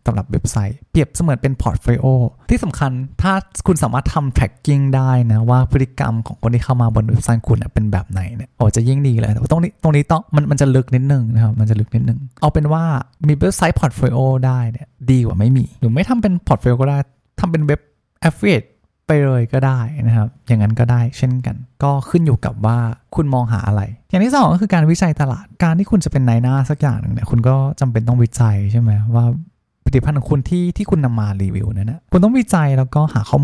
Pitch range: 115-150 Hz